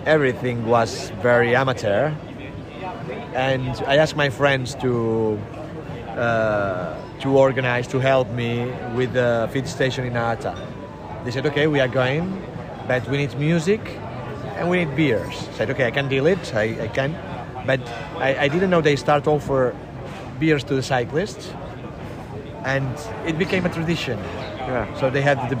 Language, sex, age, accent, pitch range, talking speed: German, male, 30-49, Spanish, 120-150 Hz, 160 wpm